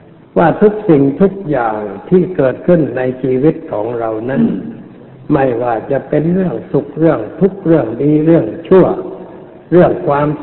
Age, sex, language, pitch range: 60-79, male, Thai, 130-160 Hz